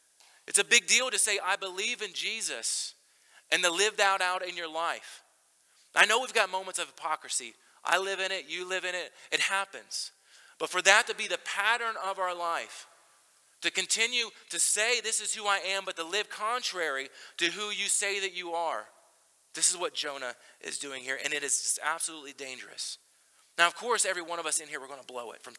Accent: American